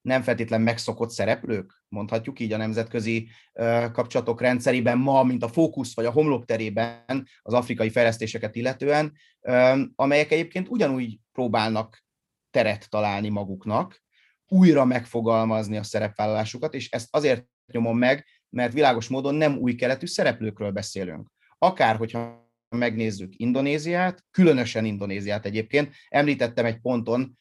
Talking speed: 125 wpm